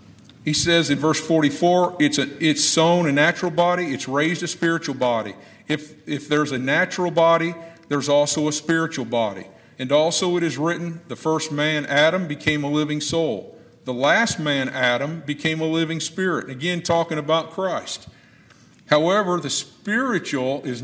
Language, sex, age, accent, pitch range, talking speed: English, male, 50-69, American, 145-165 Hz, 165 wpm